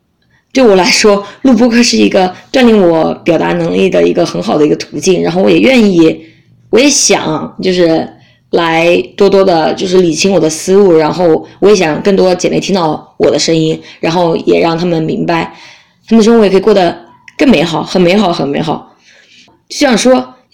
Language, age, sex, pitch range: Chinese, 20-39, female, 175-240 Hz